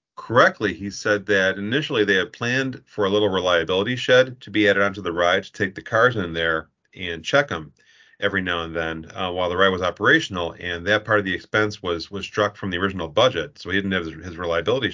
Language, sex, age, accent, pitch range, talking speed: English, male, 40-59, American, 95-110 Hz, 235 wpm